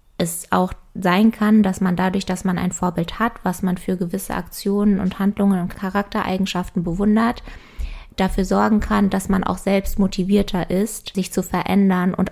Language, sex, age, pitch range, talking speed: German, female, 20-39, 180-200 Hz, 170 wpm